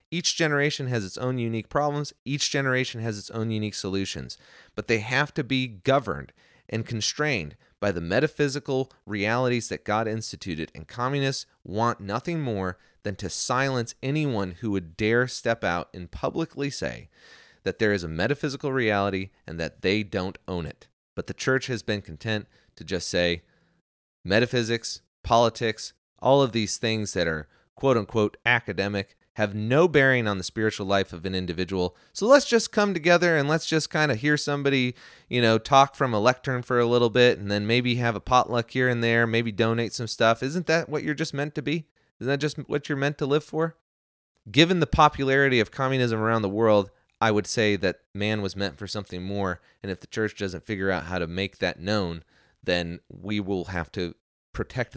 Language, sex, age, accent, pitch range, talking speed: English, male, 30-49, American, 100-135 Hz, 190 wpm